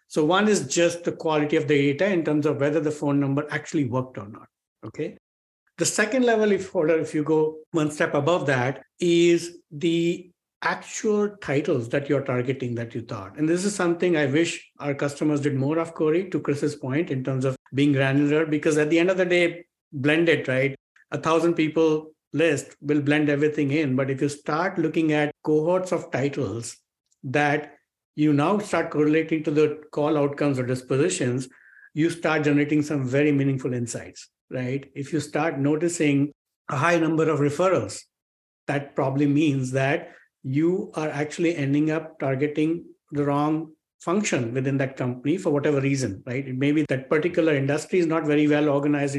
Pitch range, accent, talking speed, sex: 140-165 Hz, Indian, 180 wpm, male